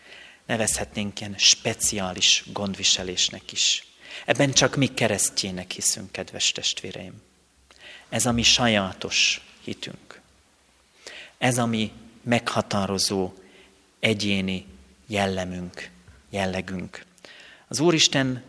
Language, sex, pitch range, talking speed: Hungarian, male, 95-125 Hz, 85 wpm